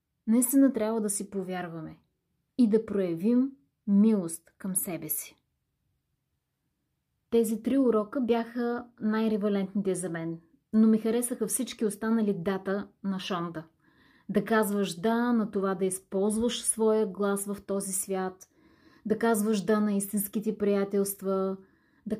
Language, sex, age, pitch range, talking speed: Bulgarian, female, 20-39, 195-230 Hz, 125 wpm